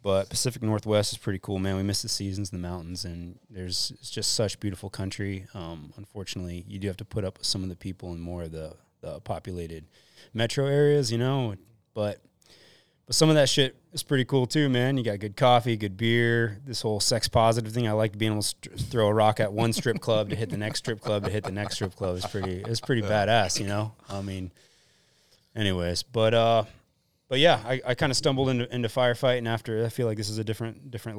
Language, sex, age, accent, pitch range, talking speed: English, male, 20-39, American, 95-115 Hz, 235 wpm